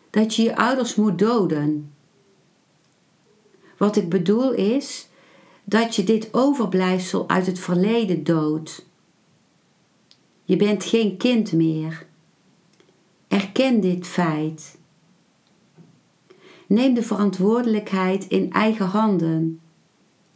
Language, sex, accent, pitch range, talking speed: Dutch, female, Dutch, 170-220 Hz, 95 wpm